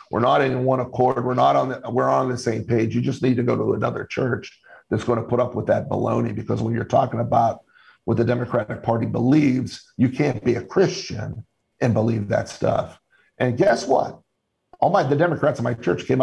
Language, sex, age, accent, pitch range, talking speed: English, male, 50-69, American, 115-130 Hz, 220 wpm